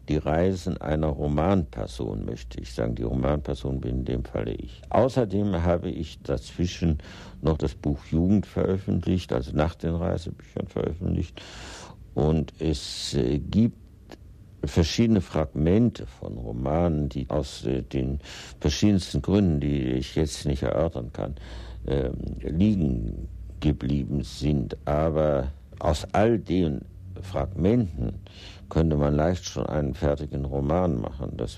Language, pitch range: German, 70-90 Hz